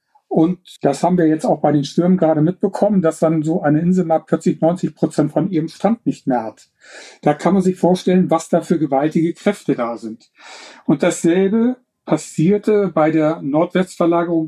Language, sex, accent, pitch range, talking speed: German, male, German, 155-190 Hz, 180 wpm